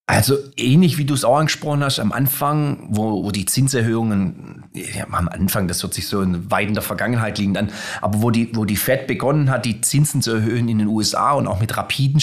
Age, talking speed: 30-49, 225 wpm